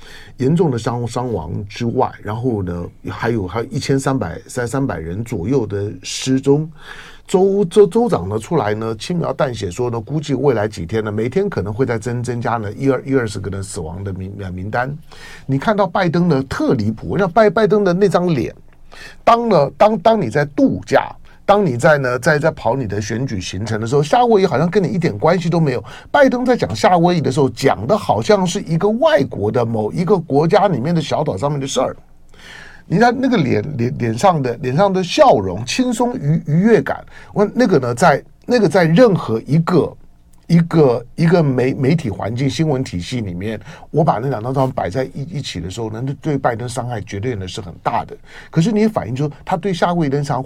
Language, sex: Chinese, male